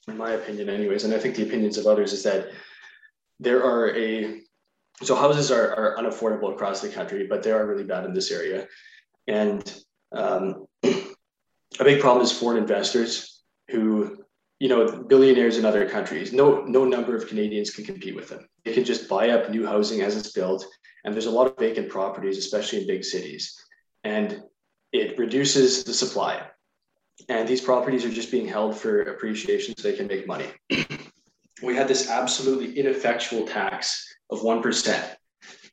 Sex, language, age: male, English, 20-39